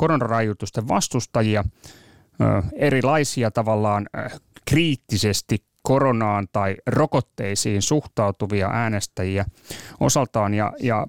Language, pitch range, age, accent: Finnish, 105-135 Hz, 30-49, native